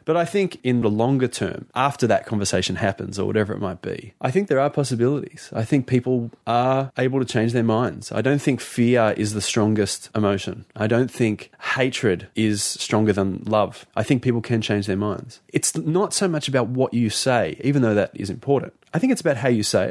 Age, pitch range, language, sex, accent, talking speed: 20-39, 105-130 Hz, English, male, Australian, 220 wpm